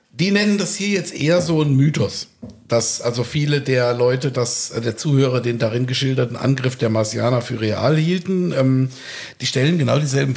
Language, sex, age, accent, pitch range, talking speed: German, male, 50-69, German, 125-155 Hz, 180 wpm